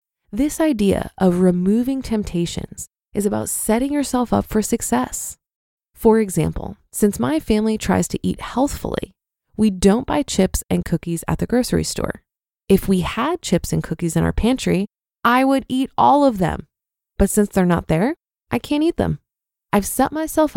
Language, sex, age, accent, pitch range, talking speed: English, female, 20-39, American, 175-235 Hz, 170 wpm